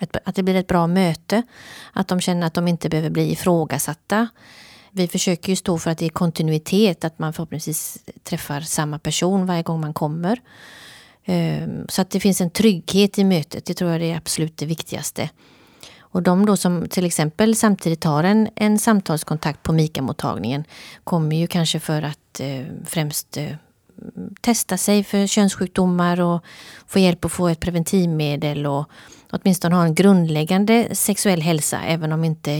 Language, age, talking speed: Swedish, 30-49, 165 wpm